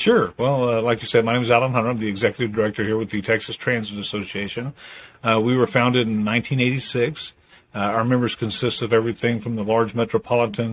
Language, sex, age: English, male, 50-69